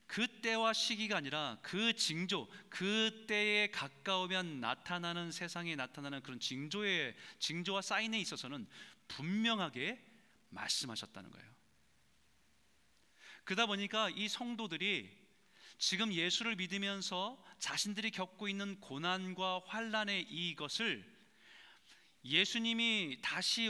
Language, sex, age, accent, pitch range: Korean, male, 30-49, native, 155-220 Hz